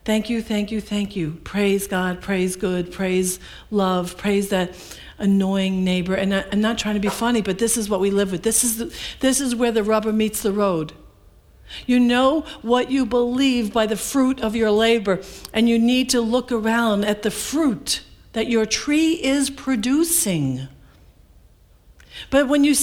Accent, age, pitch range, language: American, 60-79, 205-290 Hz, English